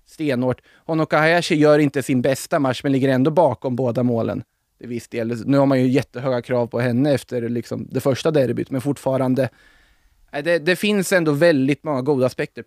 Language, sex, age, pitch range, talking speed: Swedish, male, 20-39, 125-150 Hz, 185 wpm